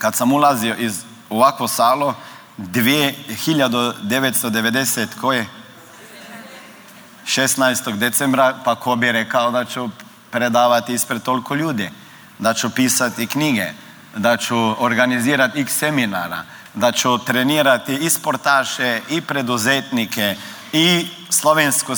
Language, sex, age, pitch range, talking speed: Croatian, male, 40-59, 115-135 Hz, 100 wpm